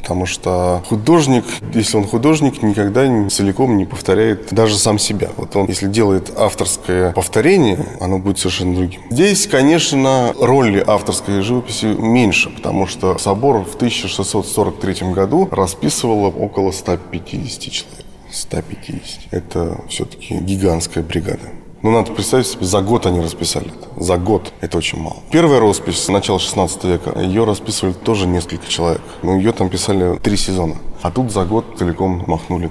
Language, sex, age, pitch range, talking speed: Russian, male, 20-39, 90-110 Hz, 150 wpm